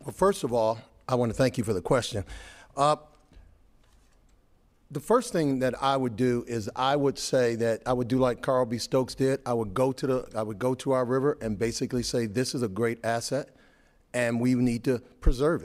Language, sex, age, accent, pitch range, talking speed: English, male, 40-59, American, 120-145 Hz, 205 wpm